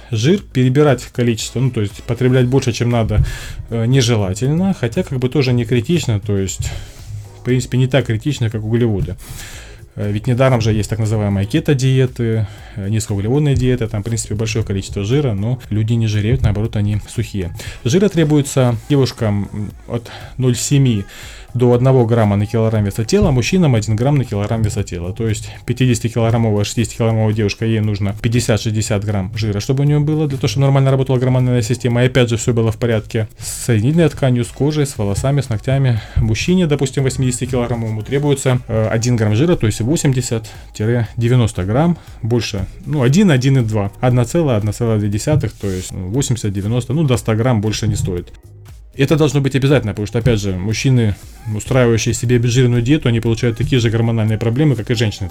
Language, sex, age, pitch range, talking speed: Russian, male, 20-39, 110-130 Hz, 165 wpm